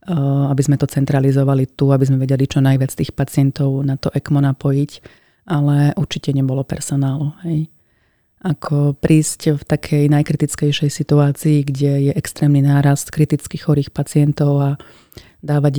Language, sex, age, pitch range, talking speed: Slovak, female, 30-49, 140-150 Hz, 135 wpm